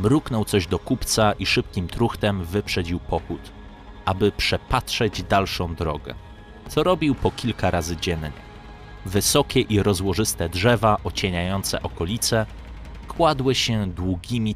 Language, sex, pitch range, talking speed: Polish, male, 95-115 Hz, 115 wpm